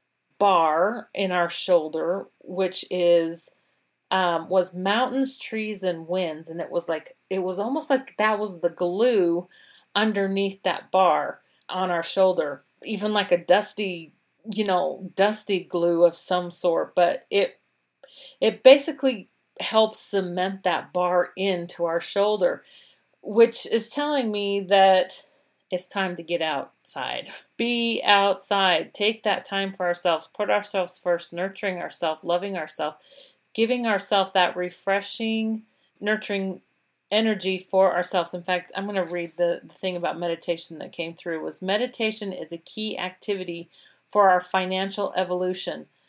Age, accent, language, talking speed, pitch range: 40-59, American, English, 140 wpm, 175-210 Hz